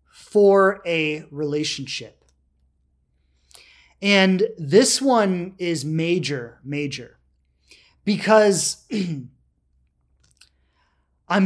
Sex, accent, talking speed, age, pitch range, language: male, American, 60 wpm, 30-49, 145-220 Hz, English